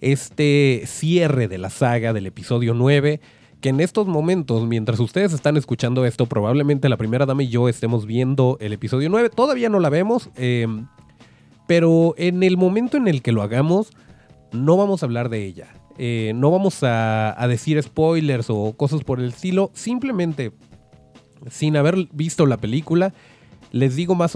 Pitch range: 125-185 Hz